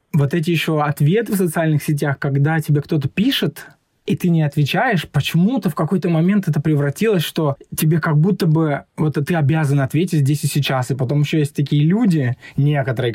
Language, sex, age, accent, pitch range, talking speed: Russian, male, 20-39, native, 140-170 Hz, 185 wpm